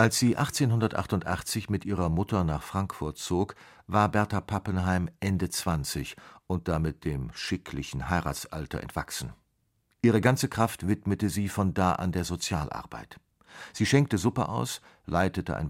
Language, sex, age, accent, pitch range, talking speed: German, male, 50-69, German, 85-105 Hz, 140 wpm